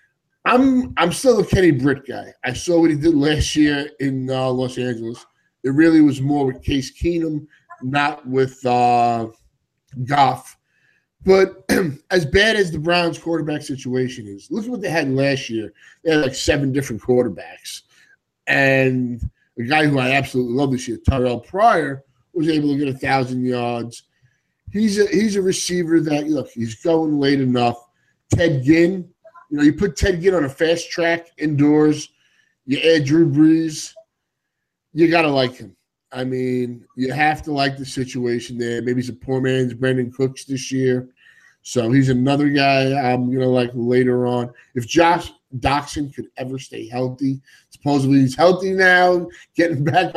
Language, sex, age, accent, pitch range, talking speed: English, male, 20-39, American, 125-165 Hz, 170 wpm